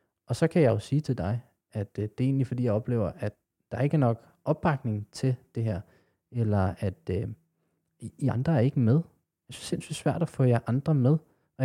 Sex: male